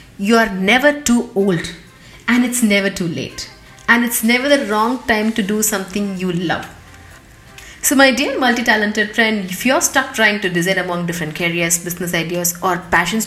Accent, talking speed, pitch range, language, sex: Indian, 175 wpm, 190-245 Hz, English, female